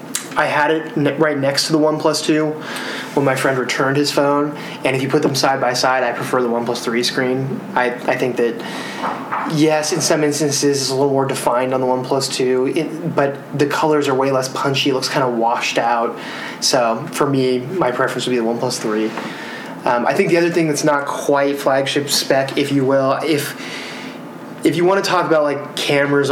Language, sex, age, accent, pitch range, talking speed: English, male, 20-39, American, 125-145 Hz, 210 wpm